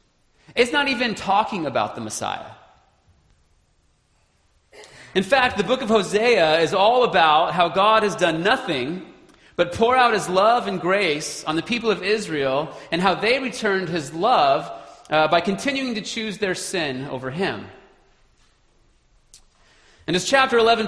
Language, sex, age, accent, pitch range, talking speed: English, male, 30-49, American, 155-235 Hz, 150 wpm